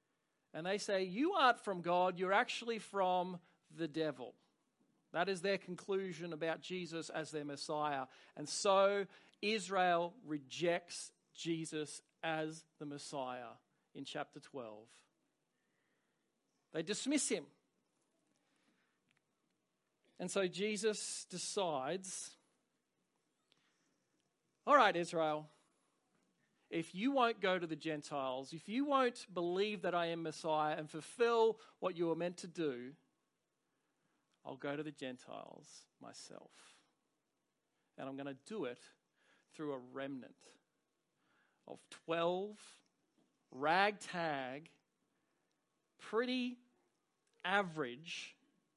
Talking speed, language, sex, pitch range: 105 wpm, English, male, 150-195 Hz